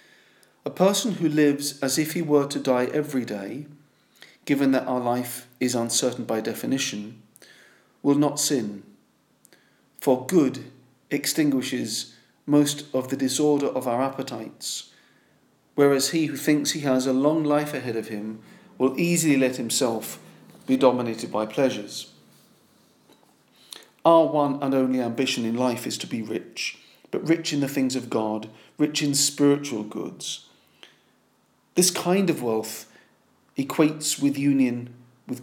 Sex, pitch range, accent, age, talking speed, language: male, 120-150 Hz, British, 40-59, 140 wpm, English